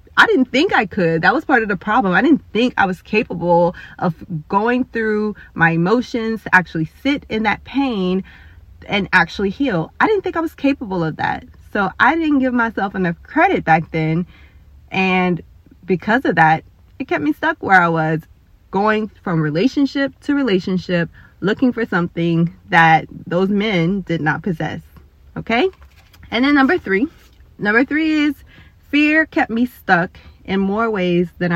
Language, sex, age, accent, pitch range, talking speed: English, female, 20-39, American, 170-225 Hz, 170 wpm